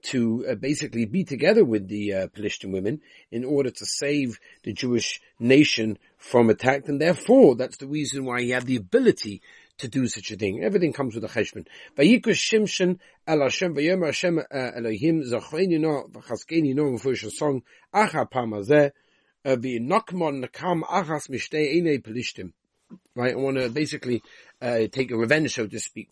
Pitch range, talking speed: 120-170 Hz, 115 wpm